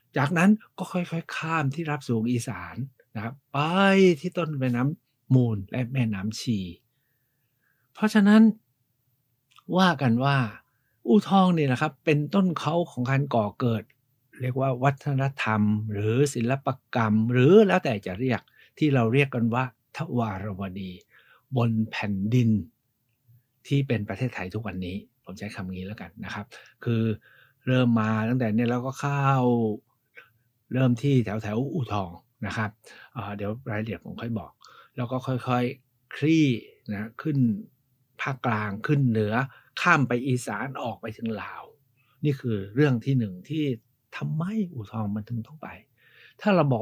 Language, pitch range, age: Thai, 115-140 Hz, 60-79